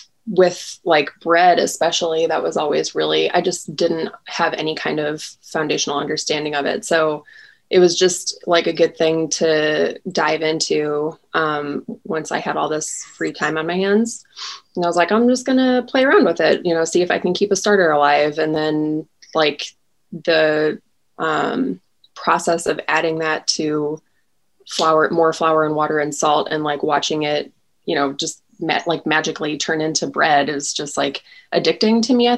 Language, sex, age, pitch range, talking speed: English, female, 20-39, 150-170 Hz, 185 wpm